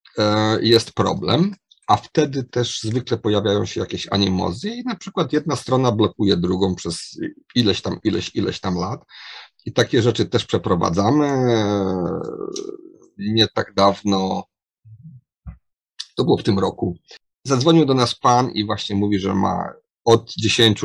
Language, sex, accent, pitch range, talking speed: Polish, male, native, 100-140 Hz, 140 wpm